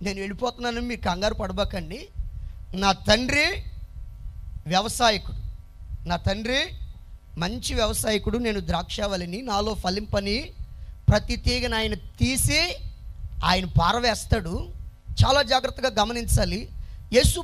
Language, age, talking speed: Telugu, 20-39, 95 wpm